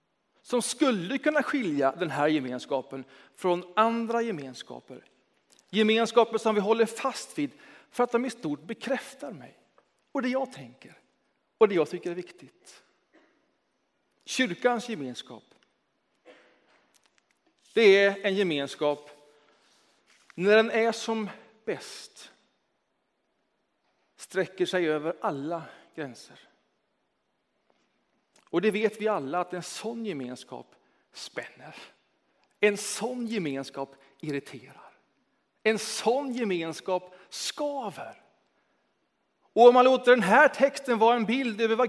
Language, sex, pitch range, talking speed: Swedish, male, 170-240 Hz, 115 wpm